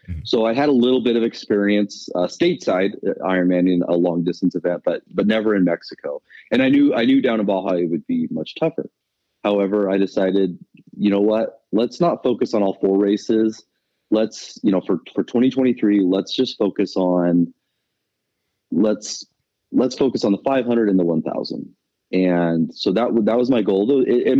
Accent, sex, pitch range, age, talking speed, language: American, male, 90-115 Hz, 30-49, 185 wpm, English